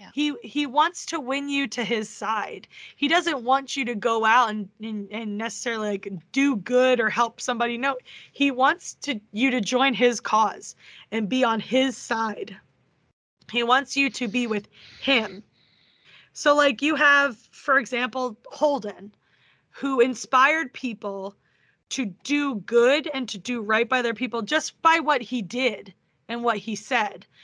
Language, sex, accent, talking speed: English, female, American, 165 wpm